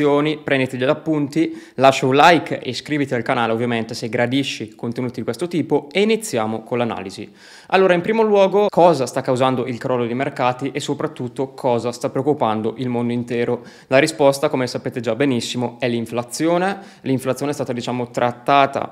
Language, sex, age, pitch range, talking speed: Italian, male, 20-39, 125-145 Hz, 170 wpm